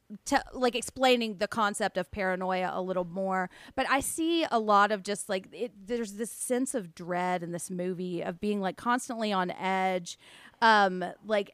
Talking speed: 180 wpm